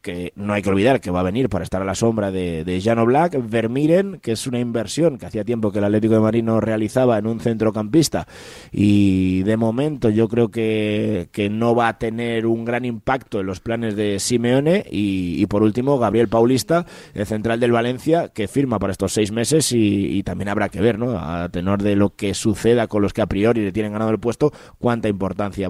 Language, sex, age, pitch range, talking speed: Spanish, male, 20-39, 110-130 Hz, 225 wpm